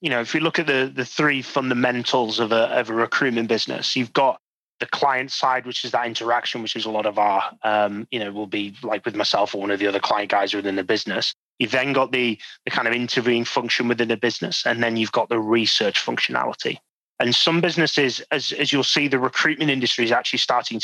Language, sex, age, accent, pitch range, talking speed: English, male, 20-39, British, 105-130 Hz, 235 wpm